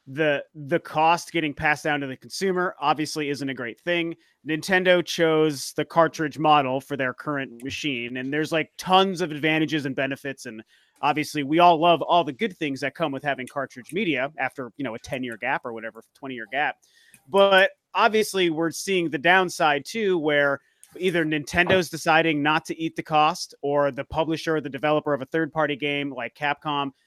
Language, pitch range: English, 140-175 Hz